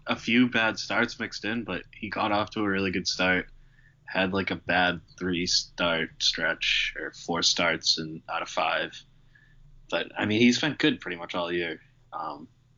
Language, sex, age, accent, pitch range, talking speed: English, male, 20-39, American, 90-130 Hz, 185 wpm